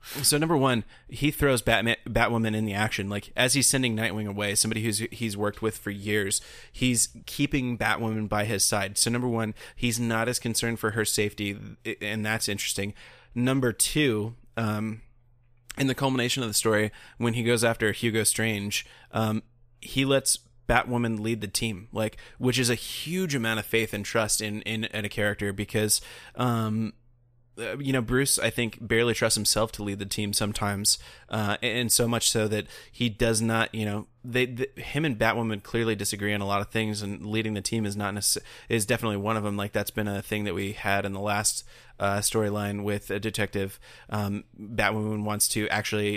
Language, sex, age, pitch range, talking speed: English, male, 20-39, 105-120 Hz, 195 wpm